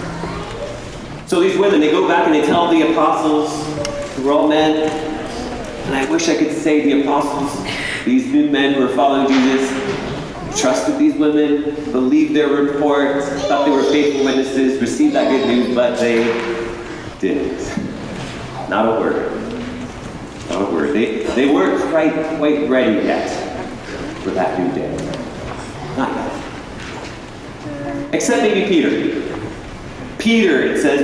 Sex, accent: male, American